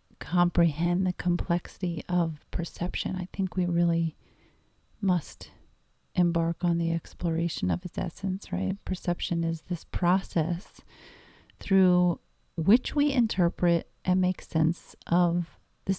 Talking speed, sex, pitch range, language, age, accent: 115 wpm, female, 170-190 Hz, English, 40-59, American